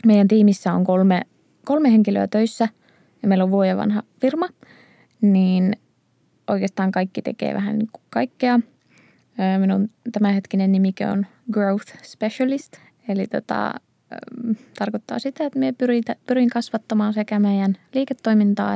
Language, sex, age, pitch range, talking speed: Finnish, female, 20-39, 195-235 Hz, 110 wpm